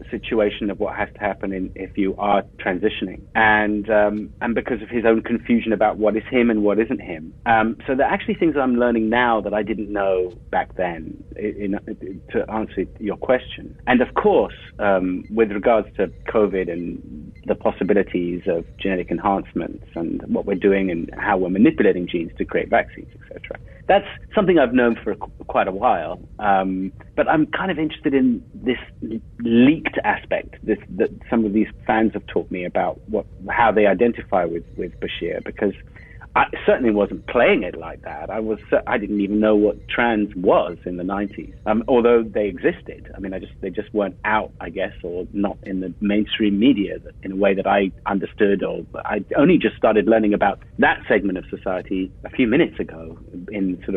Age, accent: 40-59, British